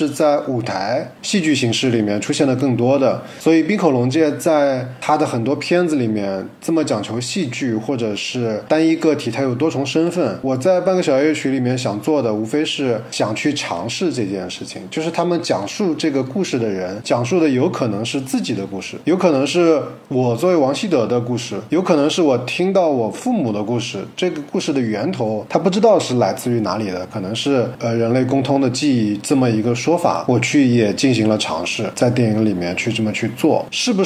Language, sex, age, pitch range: Chinese, male, 20-39, 115-155 Hz